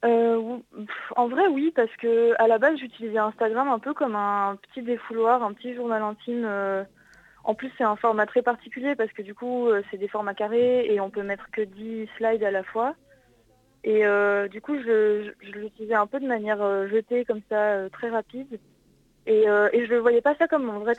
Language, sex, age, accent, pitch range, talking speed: French, female, 20-39, French, 200-240 Hz, 215 wpm